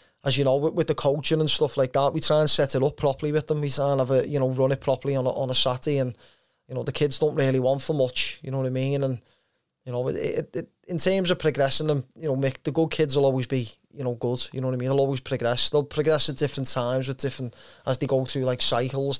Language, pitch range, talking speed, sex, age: English, 130-155 Hz, 295 wpm, male, 20-39